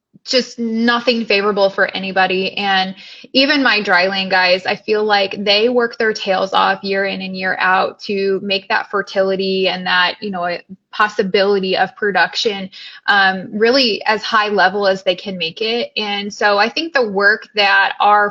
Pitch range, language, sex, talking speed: 195-230 Hz, English, female, 175 wpm